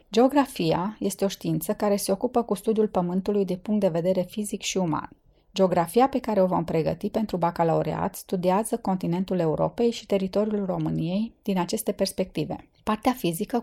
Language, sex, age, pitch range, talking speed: Romanian, female, 30-49, 180-210 Hz, 160 wpm